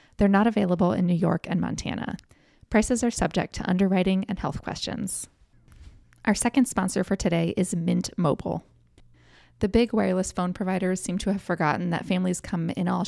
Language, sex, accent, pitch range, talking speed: English, female, American, 175-205 Hz, 175 wpm